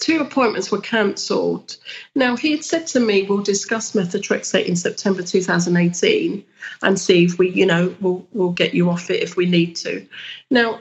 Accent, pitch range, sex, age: British, 190-230 Hz, female, 40-59